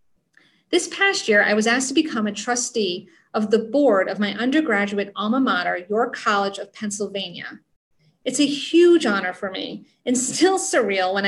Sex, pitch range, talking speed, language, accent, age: female, 205-265 Hz, 170 wpm, English, American, 40-59